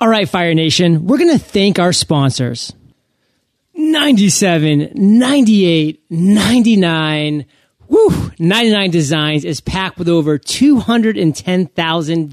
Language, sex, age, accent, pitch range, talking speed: English, male, 30-49, American, 155-195 Hz, 95 wpm